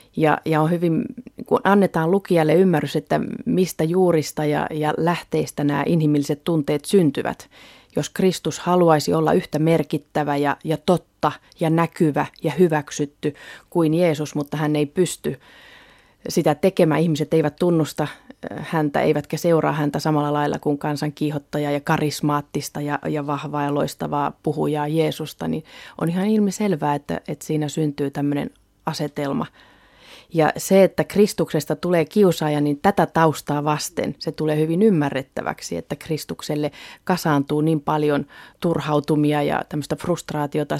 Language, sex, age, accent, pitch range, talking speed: Finnish, female, 30-49, native, 150-165 Hz, 135 wpm